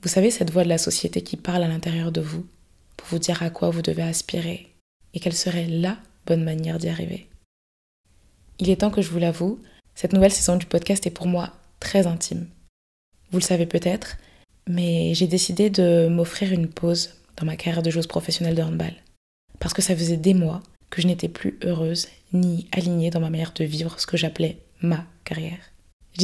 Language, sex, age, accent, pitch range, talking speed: French, female, 20-39, French, 160-185 Hz, 205 wpm